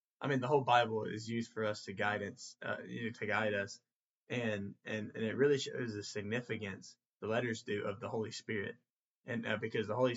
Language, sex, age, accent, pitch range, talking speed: English, male, 10-29, American, 105-125 Hz, 220 wpm